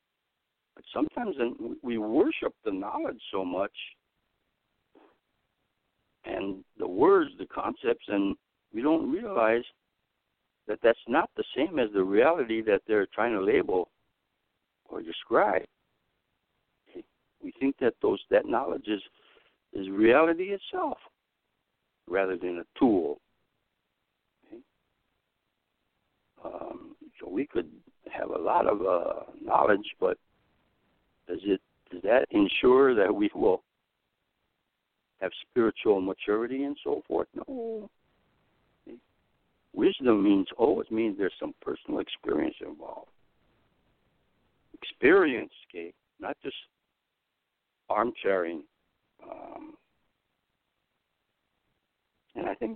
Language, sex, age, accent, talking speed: English, male, 60-79, American, 105 wpm